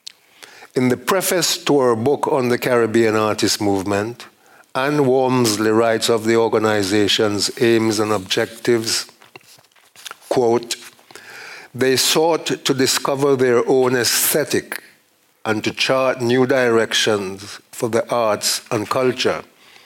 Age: 50-69